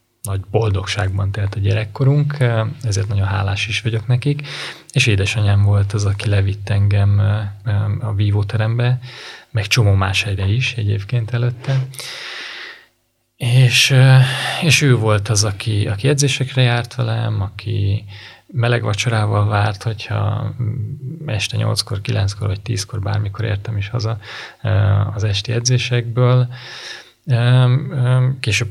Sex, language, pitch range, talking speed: male, Hungarian, 100-120 Hz, 115 wpm